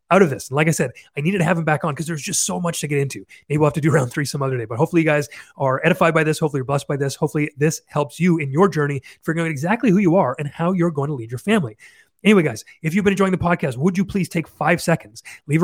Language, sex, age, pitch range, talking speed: English, male, 30-49, 145-175 Hz, 310 wpm